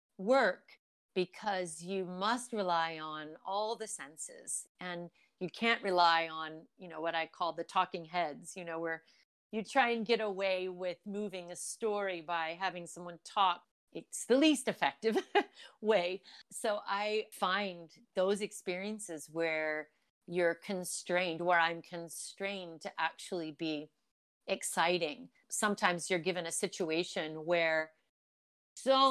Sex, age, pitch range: female, 40-59, 170-215 Hz